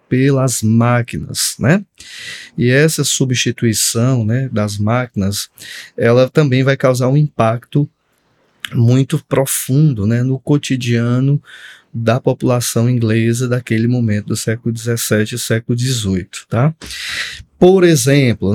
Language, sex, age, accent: Portuguese, male, 20-39, Brazilian